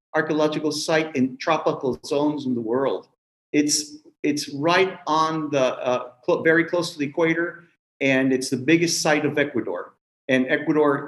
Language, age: Spanish, 50-69